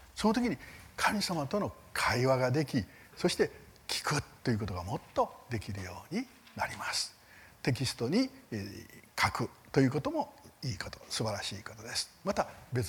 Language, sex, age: Japanese, male, 60-79